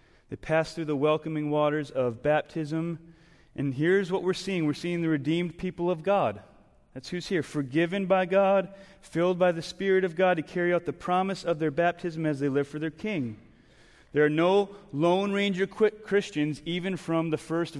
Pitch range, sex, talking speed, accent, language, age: 135-180 Hz, male, 190 wpm, American, English, 30-49